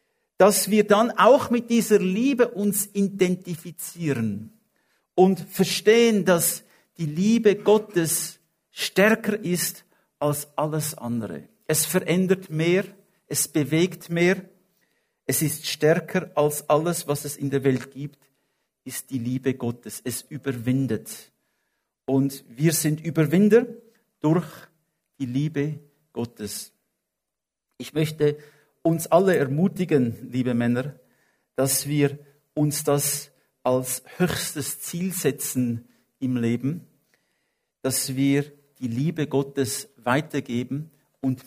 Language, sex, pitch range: English, male, 135-185 Hz